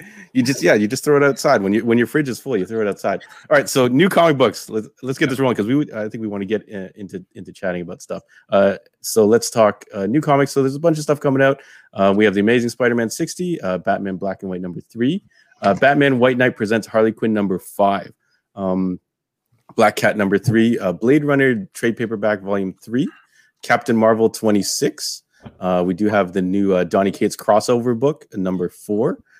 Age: 30-49